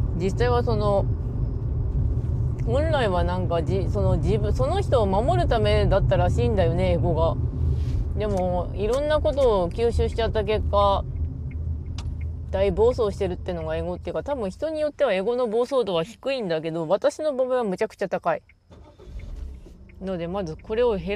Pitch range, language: 85-125 Hz, Japanese